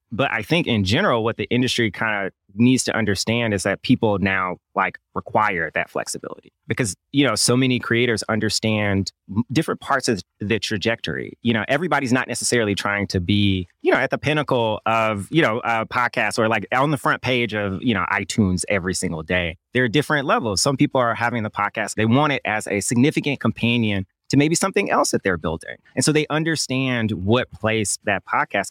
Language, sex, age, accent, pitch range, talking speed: English, male, 30-49, American, 100-125 Hz, 200 wpm